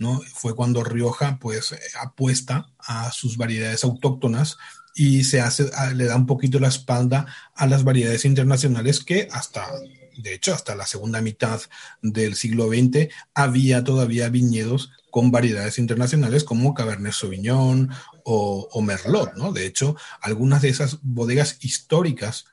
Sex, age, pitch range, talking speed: male, 40-59, 110-135 Hz, 145 wpm